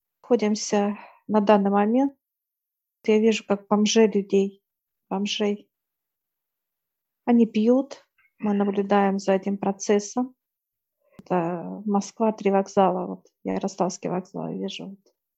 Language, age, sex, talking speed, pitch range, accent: Russian, 40-59, female, 115 wpm, 195-220 Hz, native